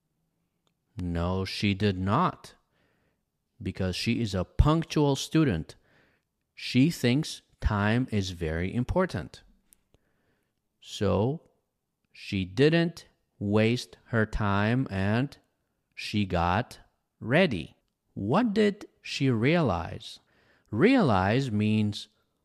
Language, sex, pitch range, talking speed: English, male, 100-145 Hz, 85 wpm